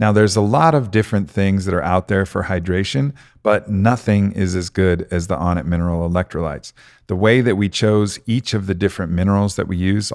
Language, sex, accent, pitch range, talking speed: English, male, American, 90-110 Hz, 215 wpm